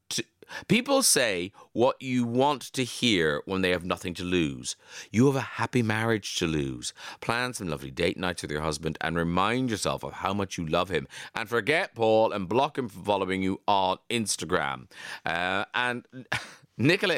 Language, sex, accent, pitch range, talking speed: English, male, British, 95-135 Hz, 180 wpm